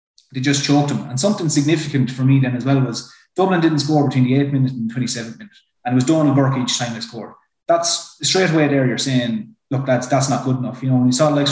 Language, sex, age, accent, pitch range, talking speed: English, male, 20-39, Irish, 130-150 Hz, 260 wpm